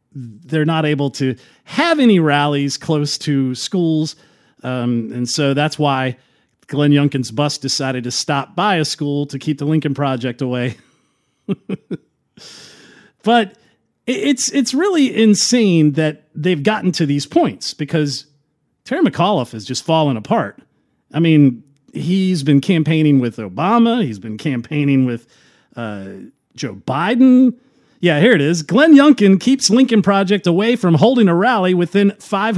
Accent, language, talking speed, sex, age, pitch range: American, English, 145 wpm, male, 40-59, 140-220 Hz